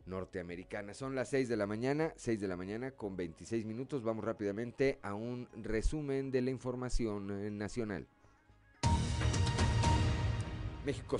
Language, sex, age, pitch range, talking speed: Spanish, male, 40-59, 105-130 Hz, 135 wpm